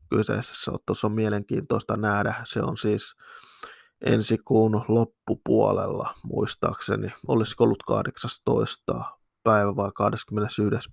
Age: 20-39